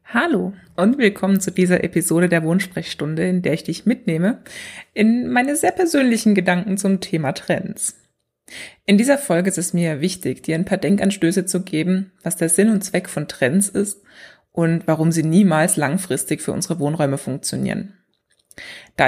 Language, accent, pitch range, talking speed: German, German, 160-205 Hz, 165 wpm